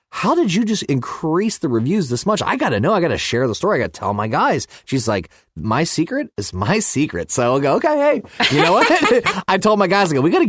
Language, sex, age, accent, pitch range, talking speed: English, male, 30-49, American, 110-150 Hz, 280 wpm